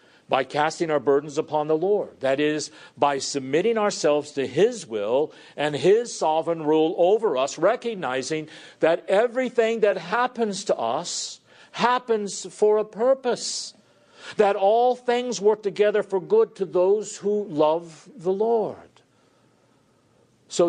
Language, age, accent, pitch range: English, 50-69, American, 145-210 Hz